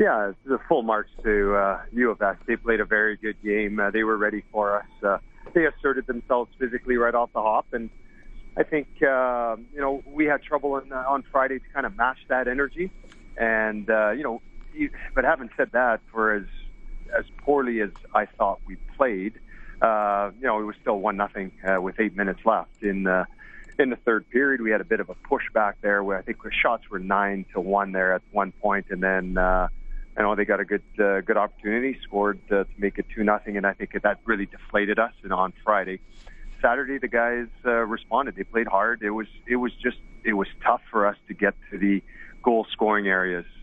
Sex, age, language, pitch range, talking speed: male, 30-49, English, 100-115 Hz, 225 wpm